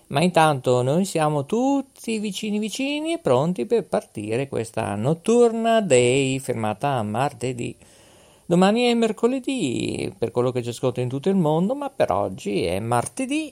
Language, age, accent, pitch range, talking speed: Italian, 50-69, native, 125-205 Hz, 145 wpm